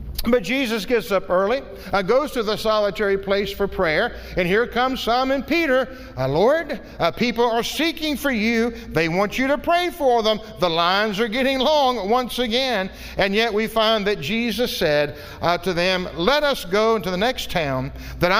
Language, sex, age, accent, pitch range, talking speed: English, male, 50-69, American, 175-250 Hz, 190 wpm